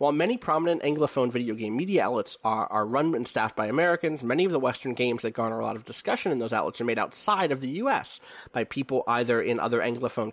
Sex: male